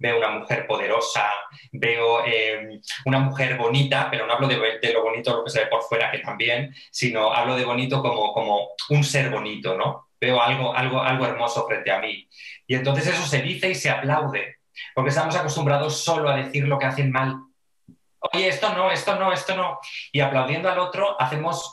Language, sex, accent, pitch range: Spanish, male, Spanish, 120-145 Hz